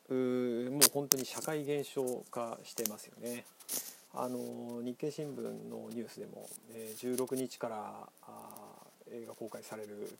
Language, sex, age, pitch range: Japanese, male, 40-59, 115-130 Hz